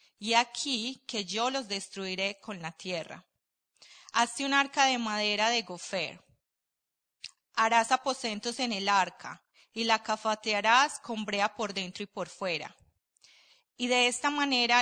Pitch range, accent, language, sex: 205-250 Hz, Colombian, Spanish, female